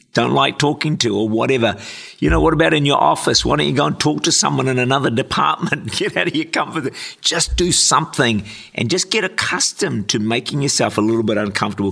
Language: English